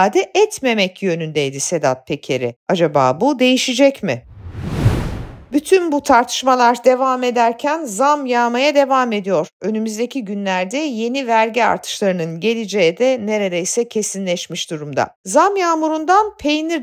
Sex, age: female, 50-69